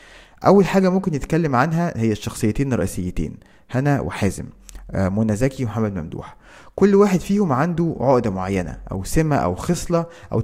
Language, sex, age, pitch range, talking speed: Arabic, male, 20-39, 110-165 Hz, 145 wpm